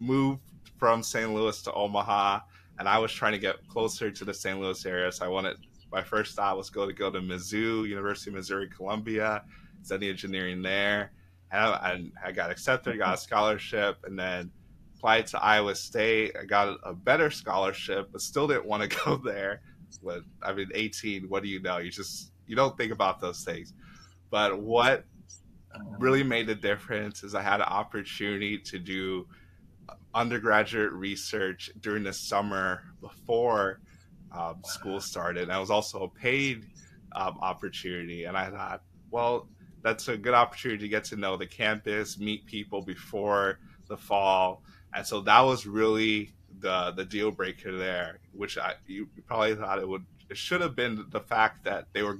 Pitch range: 95-110 Hz